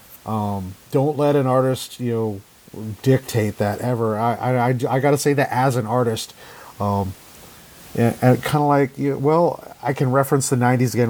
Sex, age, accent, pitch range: male, 40-59, American, 115-140 Hz